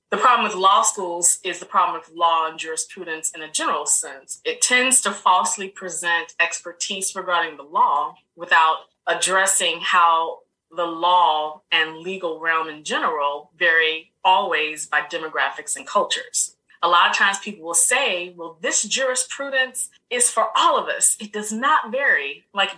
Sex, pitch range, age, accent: female, 165-215 Hz, 20-39, American